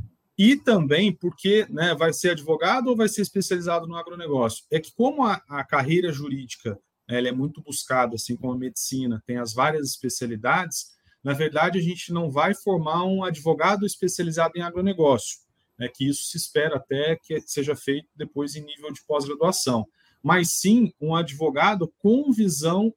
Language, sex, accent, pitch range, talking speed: Portuguese, male, Brazilian, 130-170 Hz, 165 wpm